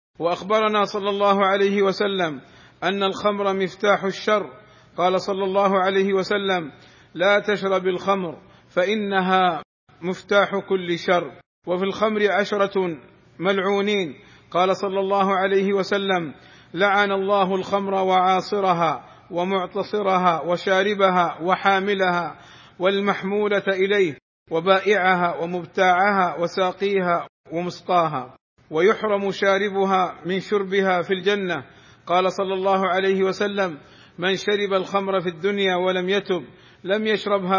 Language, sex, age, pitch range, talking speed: Arabic, male, 50-69, 180-195 Hz, 100 wpm